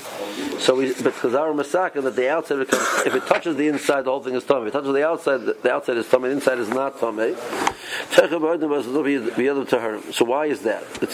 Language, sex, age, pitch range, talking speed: English, male, 50-69, 120-165 Hz, 205 wpm